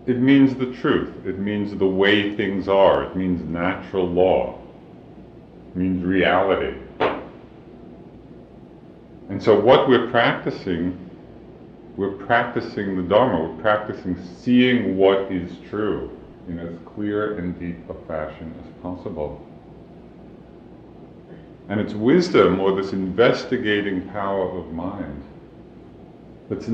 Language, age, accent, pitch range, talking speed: English, 50-69, American, 85-105 Hz, 115 wpm